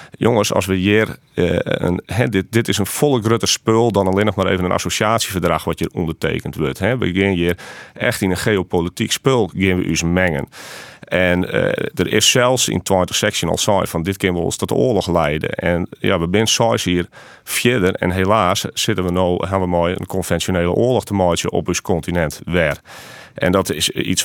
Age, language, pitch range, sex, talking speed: 40-59, Dutch, 85-100 Hz, male, 205 wpm